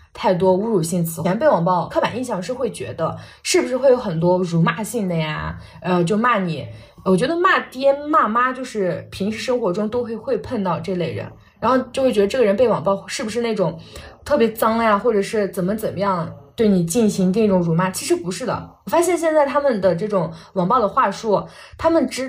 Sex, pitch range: female, 180-250 Hz